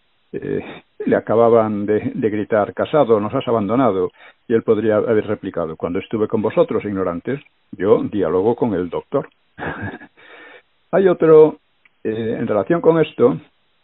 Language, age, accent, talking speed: Spanish, 60-79, Spanish, 140 wpm